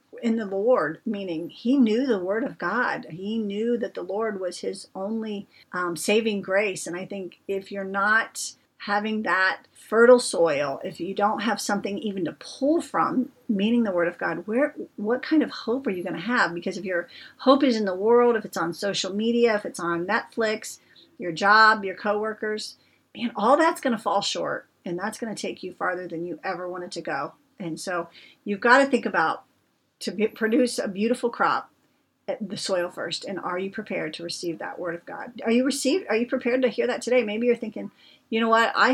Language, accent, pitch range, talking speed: English, American, 185-235 Hz, 215 wpm